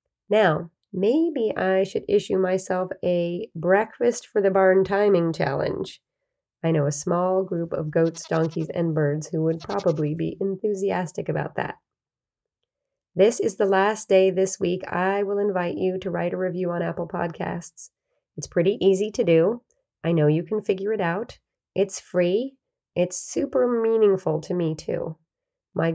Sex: female